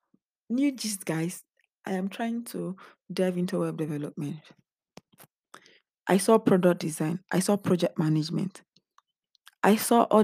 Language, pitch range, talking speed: English, 165-195 Hz, 125 wpm